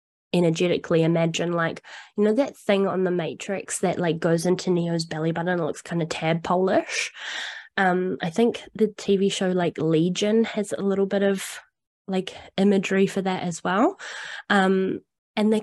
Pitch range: 180-225 Hz